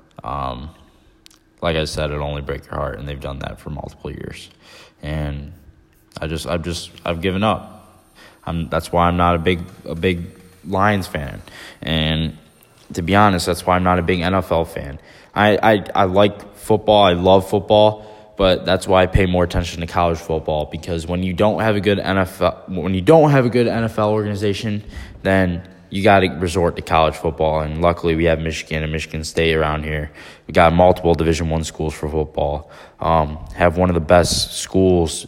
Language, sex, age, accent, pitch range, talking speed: English, male, 10-29, American, 80-100 Hz, 220 wpm